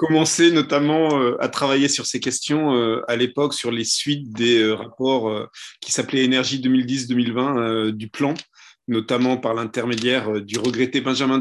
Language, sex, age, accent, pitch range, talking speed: French, male, 30-49, French, 120-145 Hz, 135 wpm